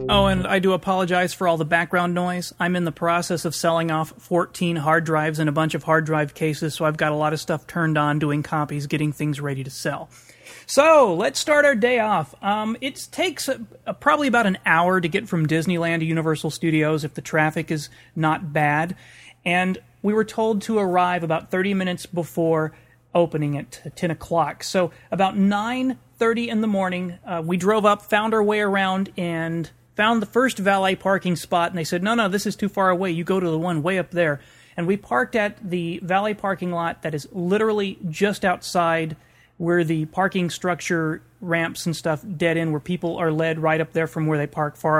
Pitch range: 155-195 Hz